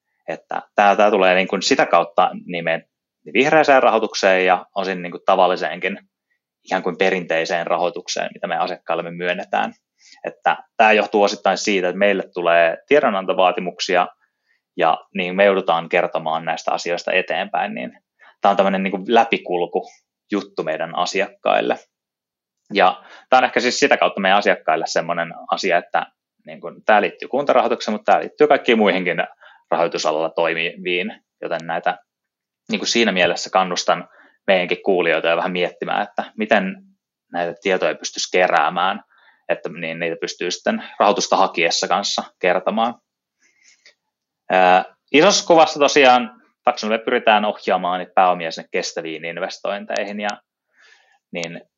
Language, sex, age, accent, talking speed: Finnish, male, 20-39, native, 135 wpm